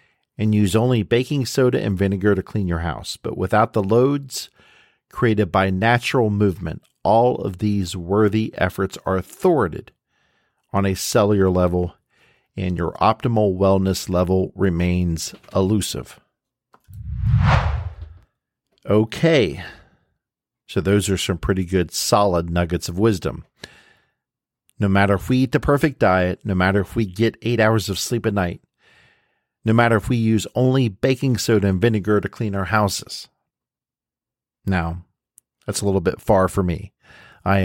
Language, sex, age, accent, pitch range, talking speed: English, male, 50-69, American, 95-115 Hz, 145 wpm